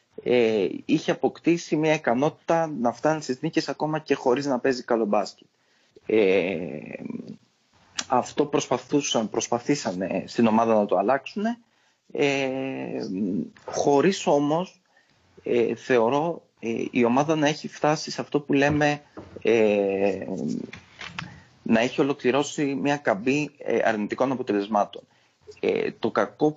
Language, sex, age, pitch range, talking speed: Greek, male, 30-49, 110-150 Hz, 115 wpm